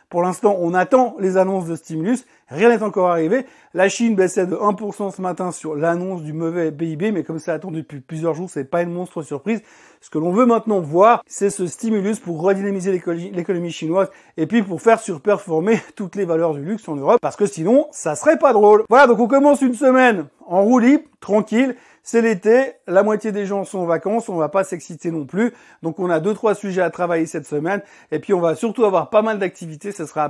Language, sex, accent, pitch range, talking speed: French, male, French, 165-225 Hz, 235 wpm